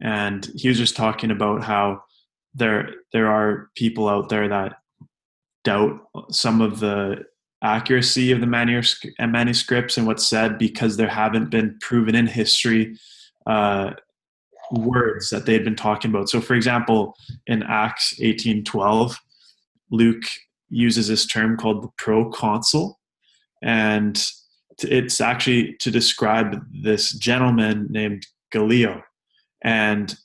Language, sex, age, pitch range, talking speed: English, male, 20-39, 105-120 Hz, 125 wpm